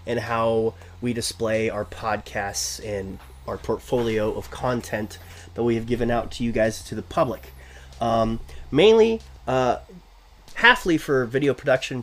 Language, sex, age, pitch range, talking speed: English, male, 30-49, 110-170 Hz, 145 wpm